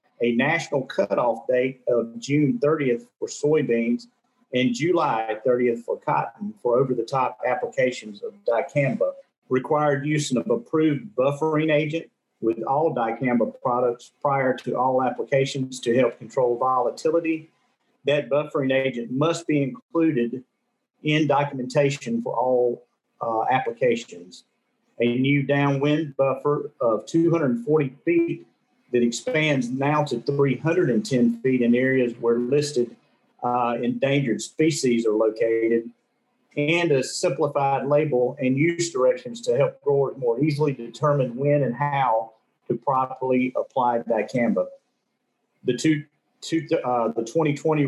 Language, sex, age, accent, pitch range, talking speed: English, male, 40-59, American, 125-160 Hz, 120 wpm